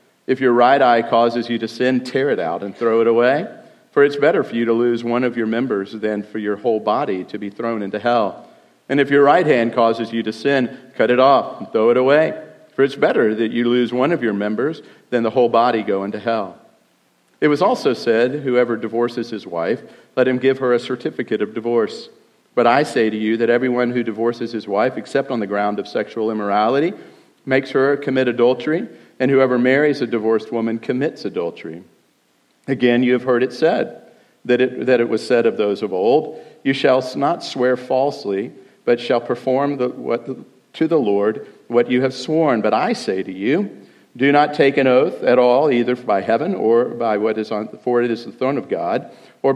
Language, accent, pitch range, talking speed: English, American, 115-130 Hz, 215 wpm